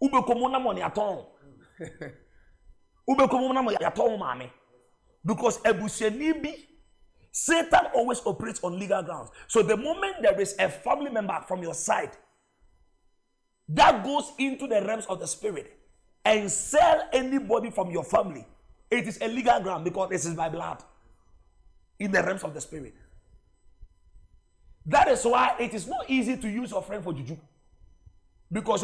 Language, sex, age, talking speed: English, male, 40-59, 130 wpm